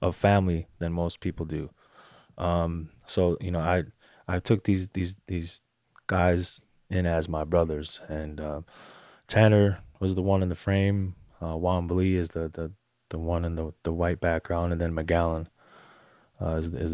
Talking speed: 170 wpm